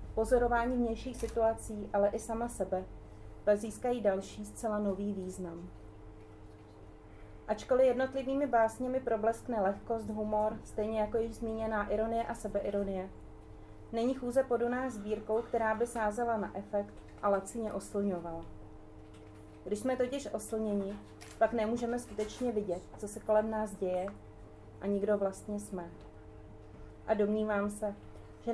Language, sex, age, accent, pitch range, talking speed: Czech, female, 30-49, native, 185-225 Hz, 120 wpm